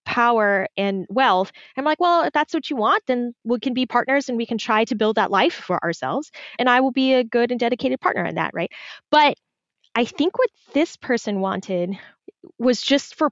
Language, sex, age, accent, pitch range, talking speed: English, female, 10-29, American, 195-260 Hz, 215 wpm